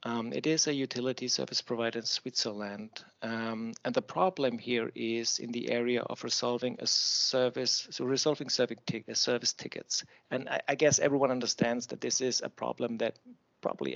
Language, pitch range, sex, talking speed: English, 115-140 Hz, male, 170 wpm